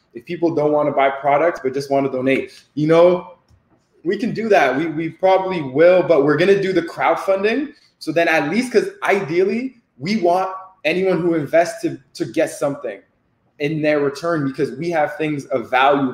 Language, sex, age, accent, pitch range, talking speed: English, male, 20-39, American, 140-180 Hz, 195 wpm